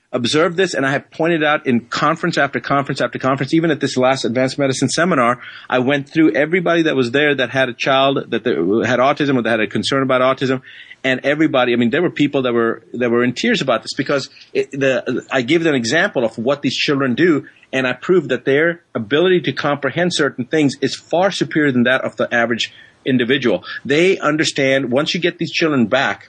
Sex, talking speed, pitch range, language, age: male, 220 wpm, 125-155 Hz, English, 40-59